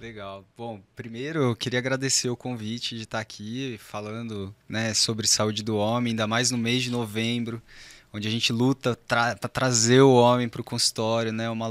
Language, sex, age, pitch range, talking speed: Portuguese, male, 20-39, 110-130 Hz, 190 wpm